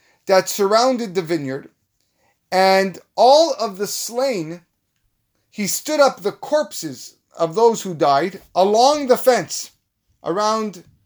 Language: English